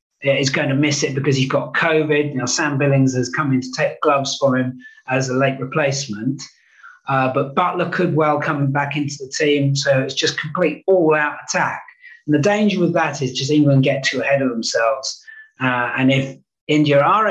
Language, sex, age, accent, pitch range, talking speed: English, male, 40-59, British, 135-155 Hz, 200 wpm